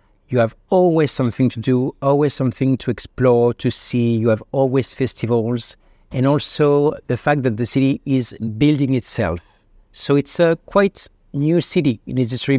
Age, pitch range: 60-79, 110-135 Hz